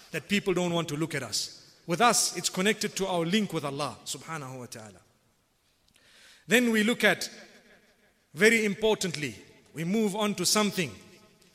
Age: 50-69